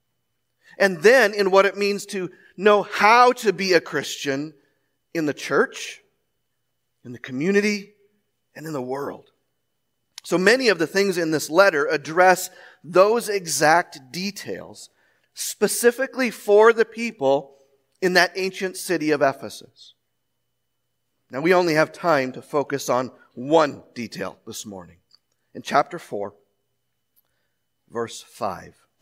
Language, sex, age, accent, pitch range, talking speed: English, male, 40-59, American, 130-190 Hz, 130 wpm